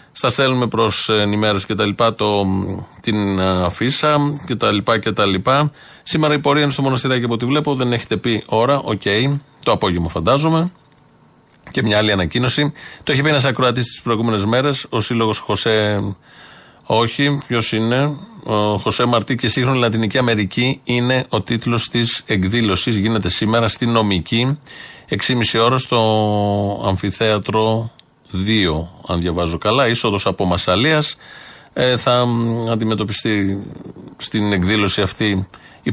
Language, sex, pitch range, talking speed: Greek, male, 100-130 Hz, 145 wpm